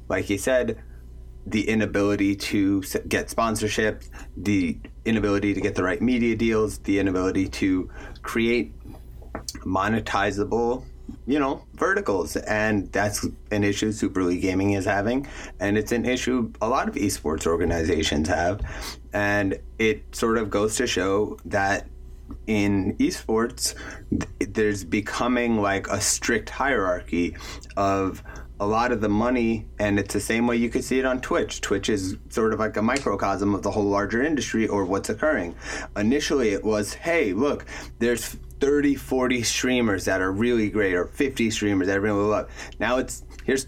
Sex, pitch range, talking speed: male, 95-115 Hz, 155 wpm